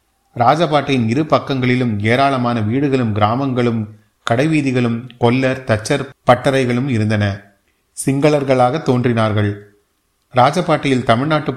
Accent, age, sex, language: native, 30-49, male, Tamil